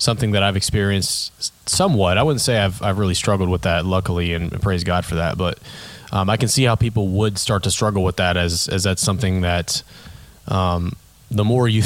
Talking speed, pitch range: 215 wpm, 95-115 Hz